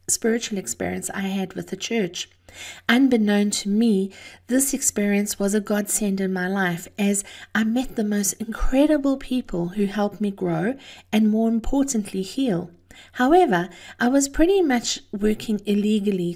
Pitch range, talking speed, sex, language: 190-235 Hz, 145 wpm, female, English